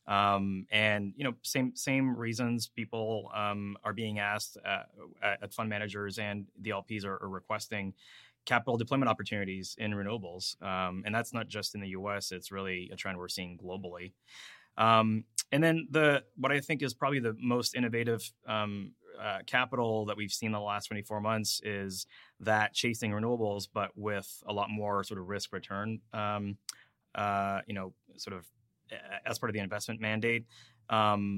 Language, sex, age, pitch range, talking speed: English, male, 20-39, 100-110 Hz, 170 wpm